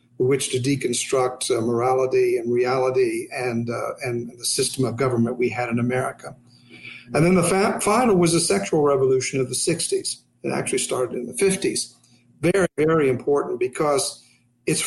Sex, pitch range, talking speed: male, 125-170 Hz, 160 wpm